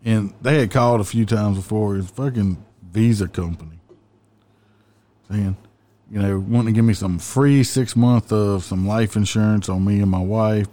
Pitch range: 100-125 Hz